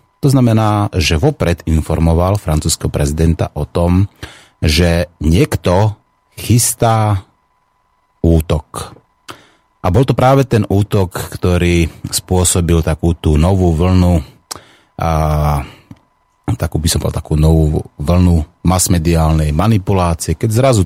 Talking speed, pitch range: 105 wpm, 80-105 Hz